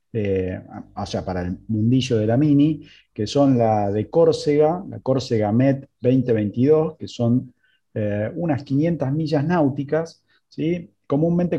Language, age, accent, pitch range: Spanish, 30-49, Argentinian, 105-145 Hz